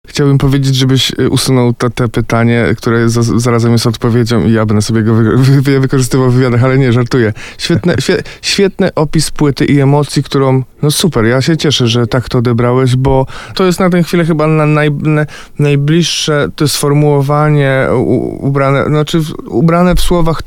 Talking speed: 180 wpm